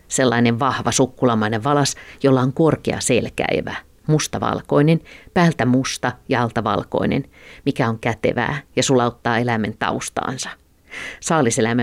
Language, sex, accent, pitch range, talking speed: Finnish, female, native, 115-145 Hz, 105 wpm